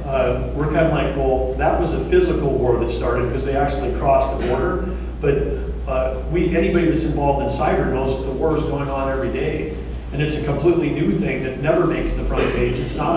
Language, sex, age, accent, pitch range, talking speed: English, male, 40-59, American, 125-150 Hz, 230 wpm